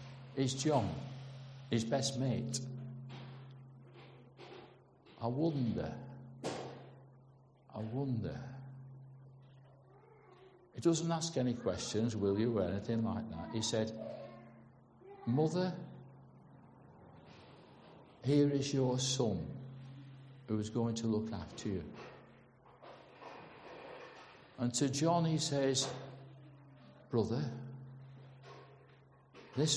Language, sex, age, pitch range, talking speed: English, male, 60-79, 120-135 Hz, 85 wpm